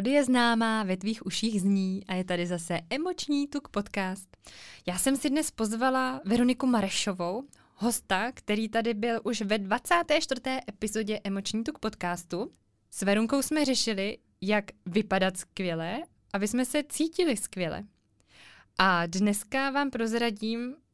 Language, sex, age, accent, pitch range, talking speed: Czech, female, 20-39, native, 200-265 Hz, 135 wpm